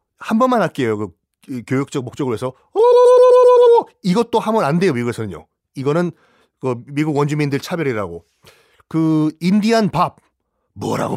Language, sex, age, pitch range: Korean, male, 30-49, 125-180 Hz